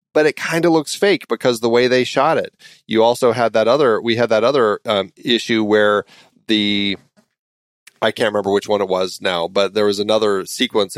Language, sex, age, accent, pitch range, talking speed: English, male, 30-49, American, 100-120 Hz, 210 wpm